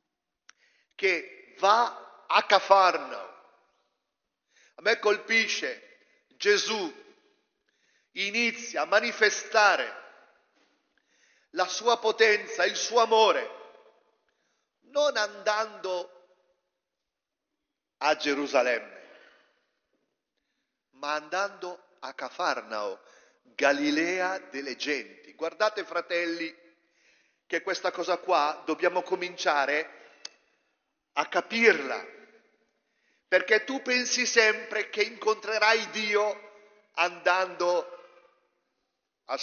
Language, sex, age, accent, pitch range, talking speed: Italian, male, 40-59, native, 180-265 Hz, 70 wpm